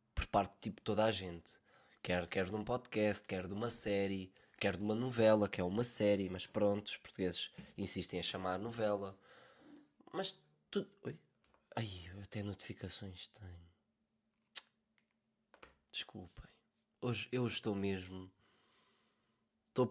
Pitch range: 100-125 Hz